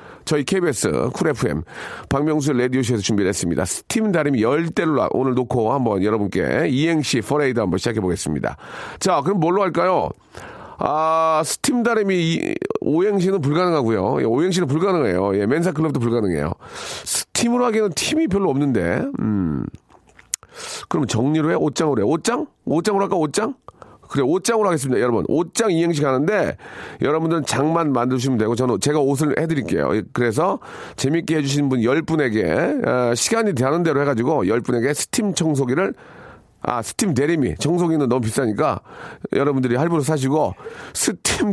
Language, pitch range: Korean, 125-175 Hz